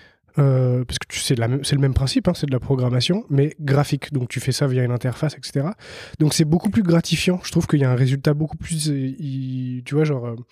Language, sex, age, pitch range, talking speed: French, male, 20-39, 130-165 Hz, 210 wpm